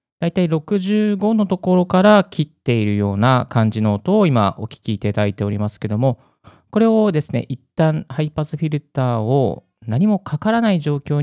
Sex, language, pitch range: male, Japanese, 105-155 Hz